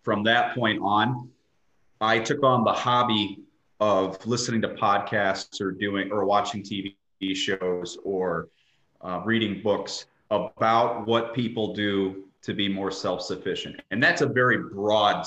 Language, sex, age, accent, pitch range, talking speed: English, male, 30-49, American, 100-130 Hz, 140 wpm